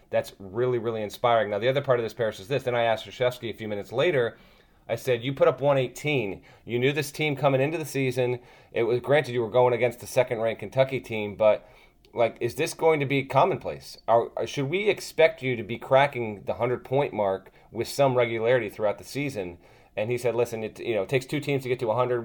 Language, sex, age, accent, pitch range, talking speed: English, male, 30-49, American, 115-135 Hz, 235 wpm